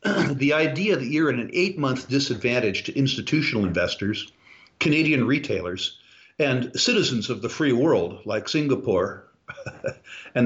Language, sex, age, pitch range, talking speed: English, male, 50-69, 115-150 Hz, 125 wpm